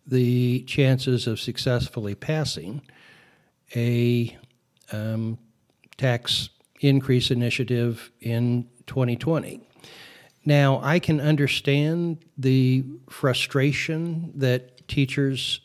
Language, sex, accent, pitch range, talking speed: English, male, American, 125-140 Hz, 75 wpm